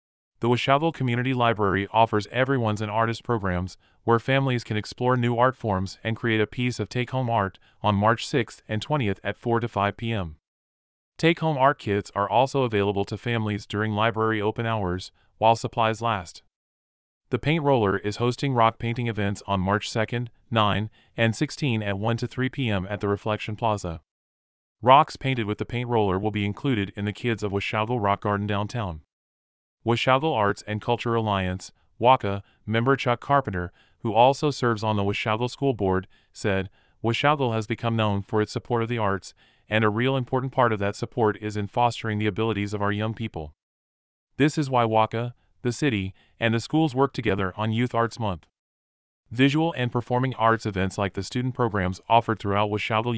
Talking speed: 180 wpm